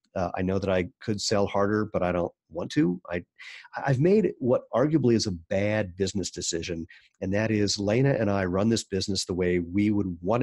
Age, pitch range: 40-59, 95-115 Hz